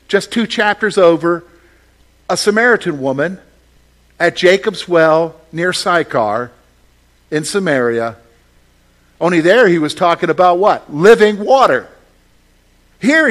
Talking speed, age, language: 110 wpm, 50-69, English